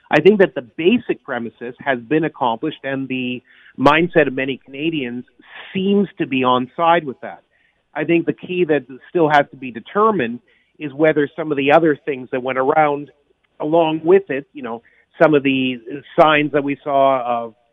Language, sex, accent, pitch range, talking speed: English, male, American, 130-160 Hz, 185 wpm